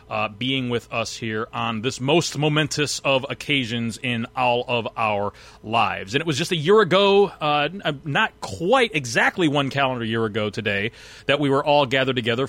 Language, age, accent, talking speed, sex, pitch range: English, 30-49, American, 185 wpm, male, 115-140 Hz